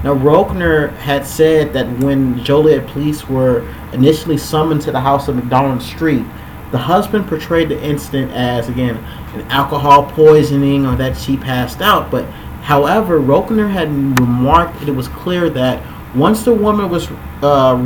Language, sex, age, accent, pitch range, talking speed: English, male, 30-49, American, 125-155 Hz, 160 wpm